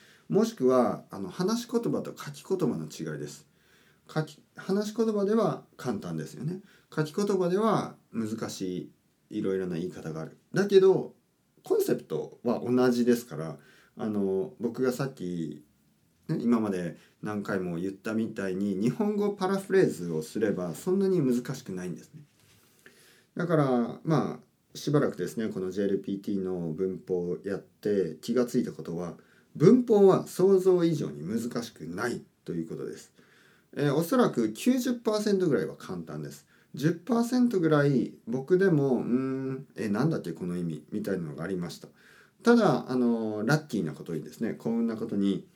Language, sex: Japanese, male